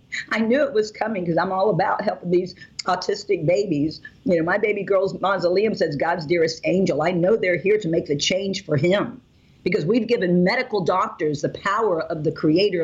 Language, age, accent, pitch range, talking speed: English, 50-69, American, 155-185 Hz, 200 wpm